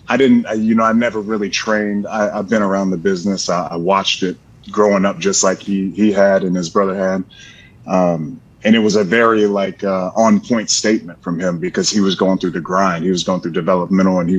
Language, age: English, 30-49